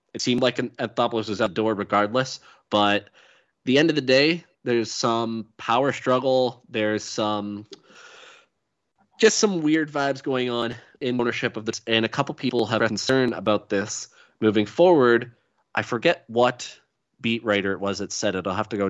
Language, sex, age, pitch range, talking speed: English, male, 20-39, 105-125 Hz, 180 wpm